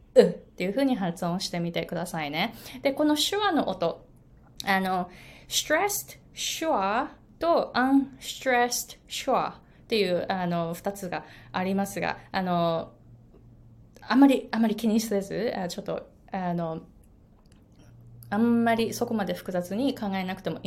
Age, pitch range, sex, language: 20-39, 190-300 Hz, female, Japanese